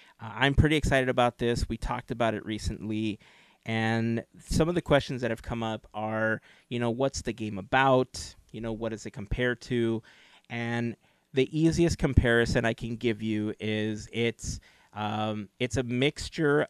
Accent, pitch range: American, 110-135 Hz